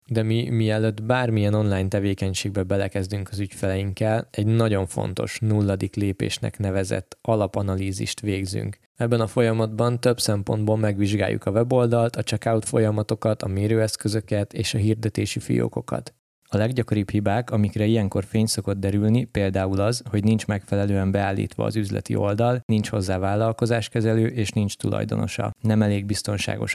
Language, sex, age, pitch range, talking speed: Hungarian, male, 20-39, 100-115 Hz, 135 wpm